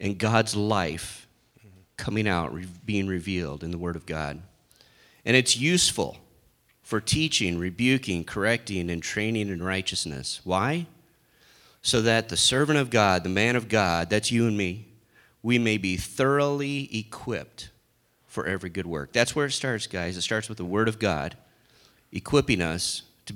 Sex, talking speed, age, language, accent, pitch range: male, 160 wpm, 30-49, English, American, 95-125 Hz